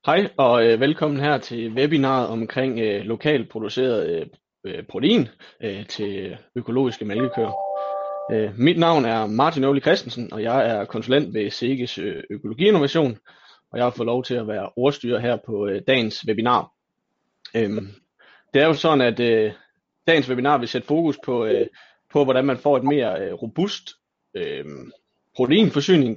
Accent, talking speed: native, 160 wpm